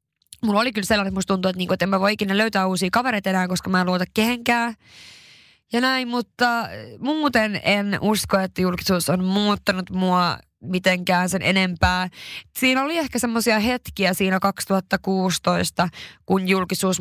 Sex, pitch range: female, 175-205 Hz